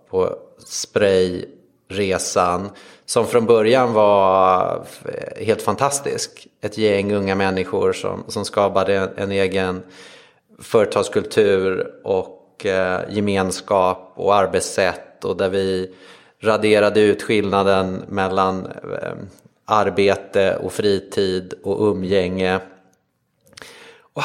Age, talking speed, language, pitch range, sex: 30-49, 85 wpm, English, 95-110 Hz, male